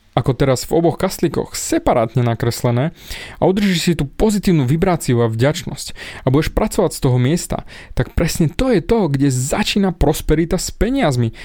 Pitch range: 125-170 Hz